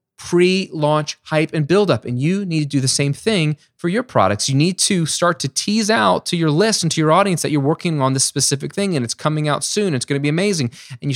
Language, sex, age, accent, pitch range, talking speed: English, male, 20-39, American, 120-170 Hz, 260 wpm